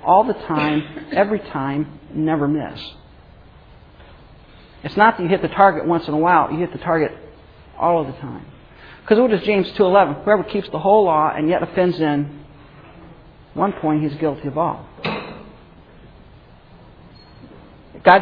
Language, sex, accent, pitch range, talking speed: English, male, American, 145-190 Hz, 155 wpm